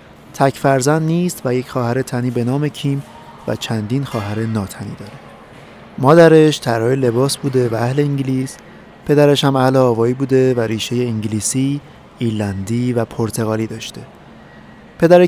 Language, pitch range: Persian, 115-140 Hz